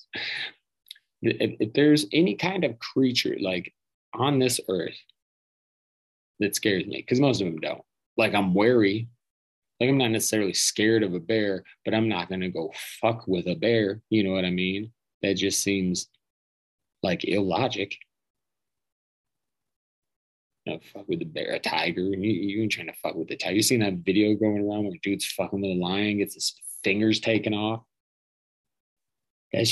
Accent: American